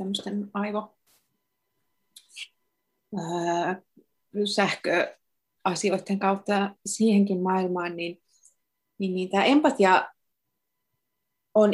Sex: female